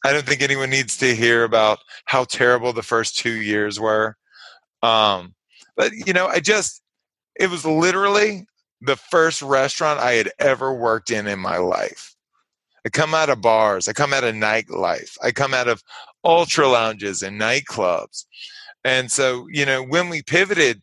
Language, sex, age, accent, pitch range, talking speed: English, male, 30-49, American, 115-155 Hz, 175 wpm